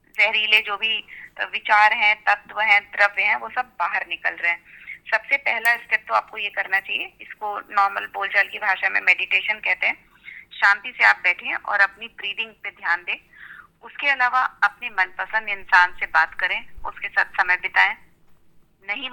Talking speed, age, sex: 175 wpm, 30-49, female